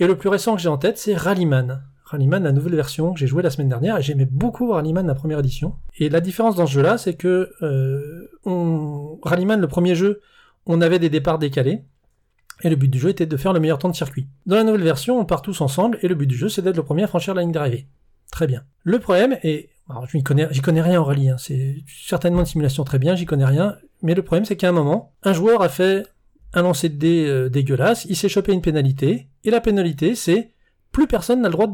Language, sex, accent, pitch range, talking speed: French, male, French, 140-185 Hz, 255 wpm